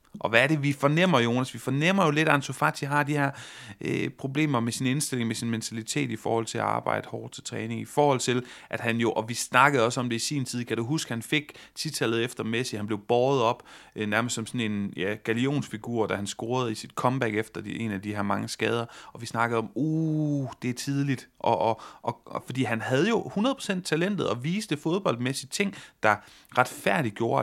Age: 30-49